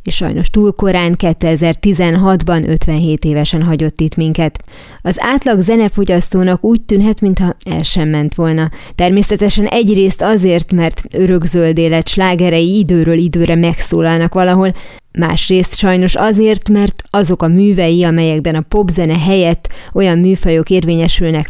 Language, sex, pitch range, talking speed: Hungarian, female, 165-190 Hz, 125 wpm